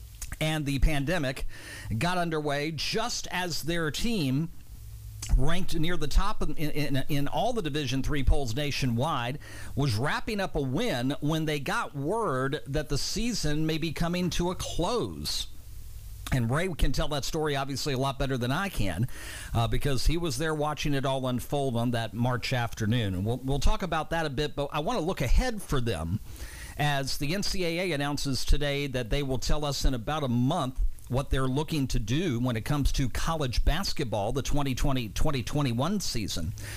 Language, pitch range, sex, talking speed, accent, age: English, 120-160 Hz, male, 180 wpm, American, 50-69